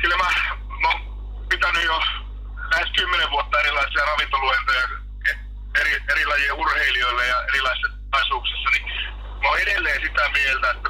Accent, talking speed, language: native, 130 wpm, Finnish